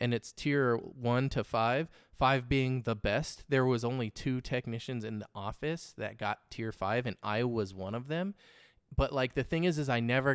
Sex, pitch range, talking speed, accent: male, 115-150 Hz, 210 wpm, American